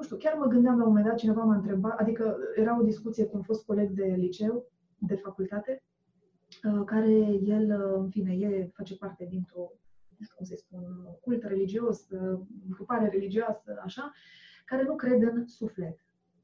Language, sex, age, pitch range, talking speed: Romanian, female, 20-39, 190-230 Hz, 170 wpm